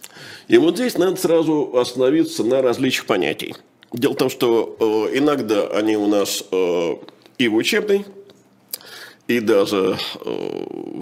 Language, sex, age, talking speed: Russian, male, 50-69, 135 wpm